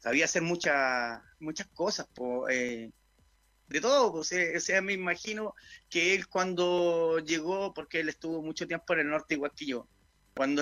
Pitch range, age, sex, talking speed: 140-190 Hz, 30-49, male, 175 wpm